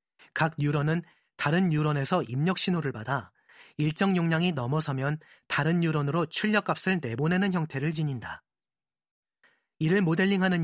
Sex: male